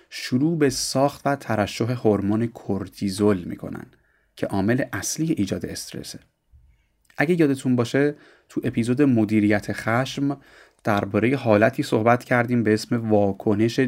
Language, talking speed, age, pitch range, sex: Persian, 110 wpm, 30-49, 105-140 Hz, male